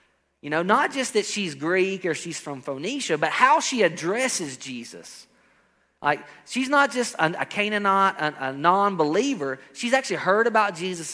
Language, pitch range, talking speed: English, 160-235 Hz, 155 wpm